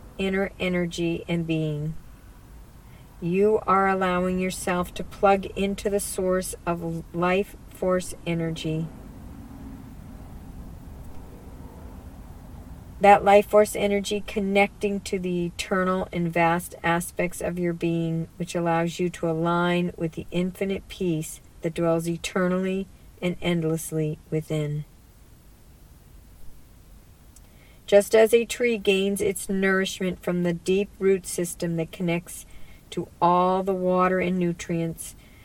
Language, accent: English, American